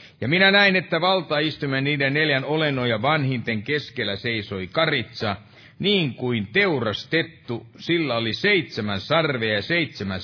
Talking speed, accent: 125 wpm, native